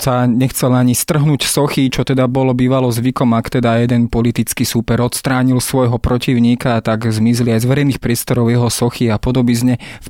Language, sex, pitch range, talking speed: Slovak, male, 115-130 Hz, 180 wpm